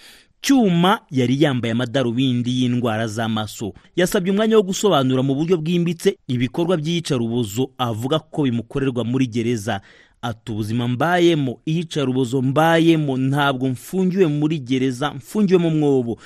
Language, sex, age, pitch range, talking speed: Swahili, male, 30-49, 120-170 Hz, 120 wpm